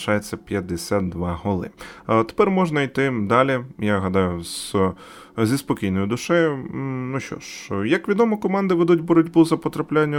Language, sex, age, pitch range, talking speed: Ukrainian, male, 20-39, 100-145 Hz, 135 wpm